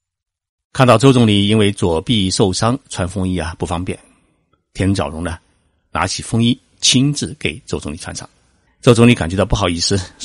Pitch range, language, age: 85-120 Hz, Chinese, 50-69